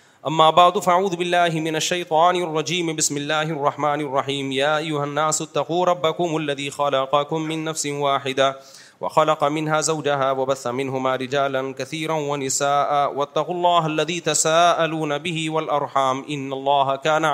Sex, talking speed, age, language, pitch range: male, 125 wpm, 30-49, Urdu, 135-160 Hz